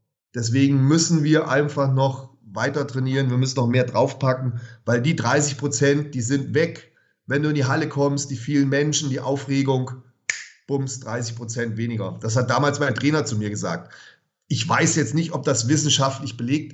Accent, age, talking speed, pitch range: German, 40-59, 180 wpm, 125-150 Hz